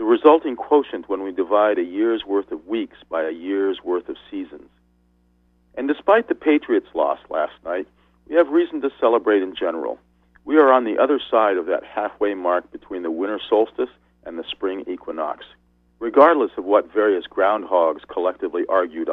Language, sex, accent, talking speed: English, male, American, 175 wpm